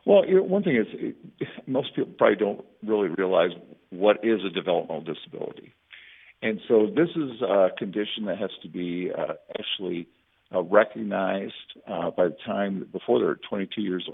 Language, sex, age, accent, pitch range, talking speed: English, male, 50-69, American, 95-125 Hz, 165 wpm